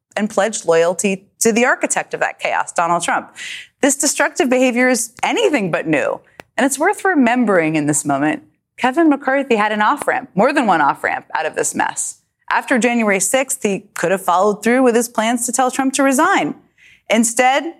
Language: English